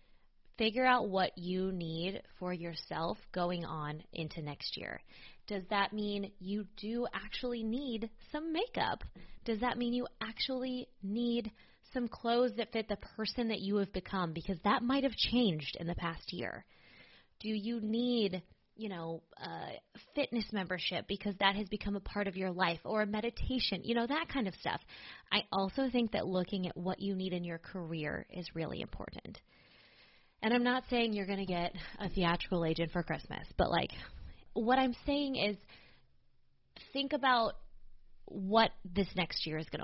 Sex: female